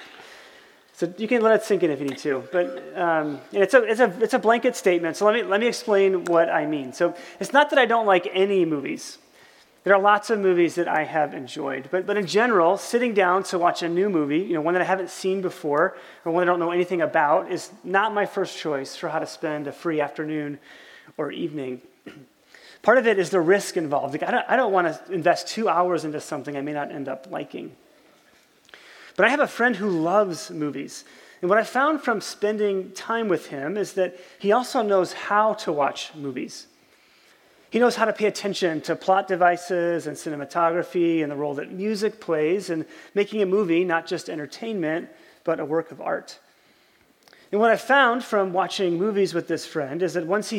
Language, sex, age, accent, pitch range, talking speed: English, male, 30-49, American, 165-210 Hz, 215 wpm